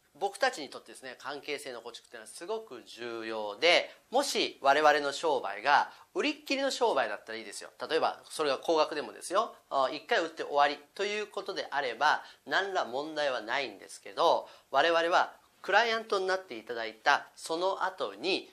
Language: Japanese